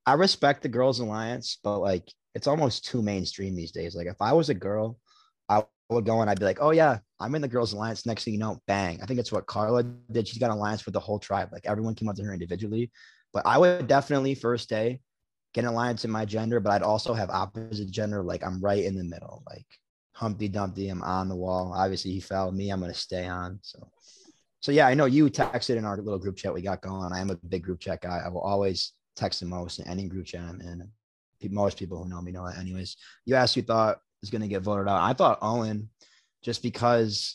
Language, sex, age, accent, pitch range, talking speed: English, male, 20-39, American, 95-115 Hz, 250 wpm